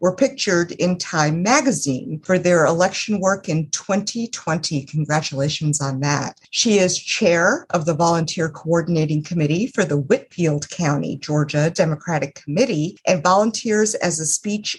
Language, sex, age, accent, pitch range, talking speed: English, female, 50-69, American, 155-200 Hz, 140 wpm